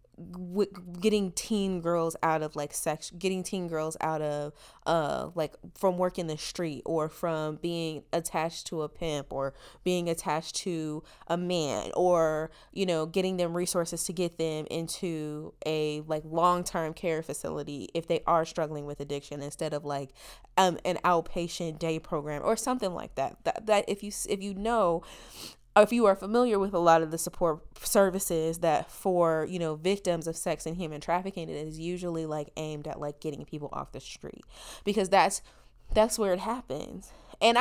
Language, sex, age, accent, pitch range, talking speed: English, female, 20-39, American, 160-205 Hz, 180 wpm